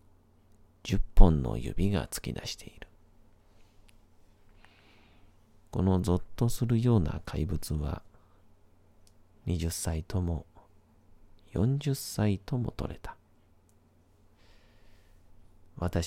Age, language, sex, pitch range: 40-59, Japanese, male, 80-100 Hz